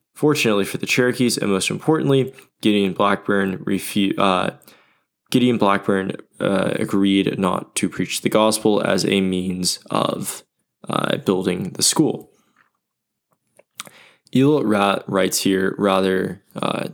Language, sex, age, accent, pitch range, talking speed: English, male, 20-39, American, 95-120 Hz, 115 wpm